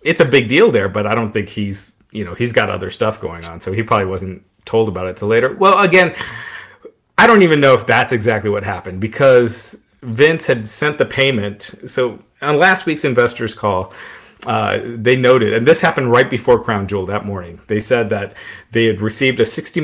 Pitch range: 100-125 Hz